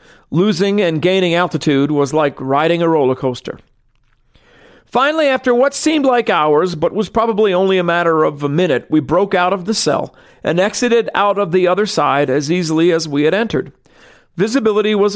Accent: American